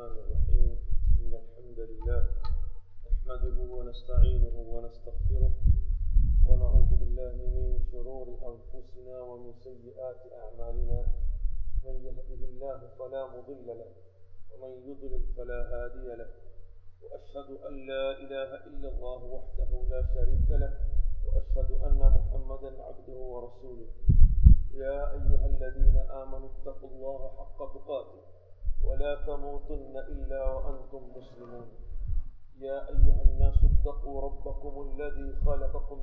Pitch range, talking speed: 85-135 Hz, 100 wpm